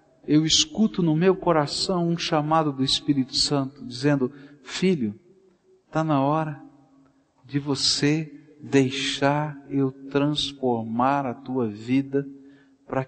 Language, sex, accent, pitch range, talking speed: Portuguese, male, Brazilian, 130-165 Hz, 110 wpm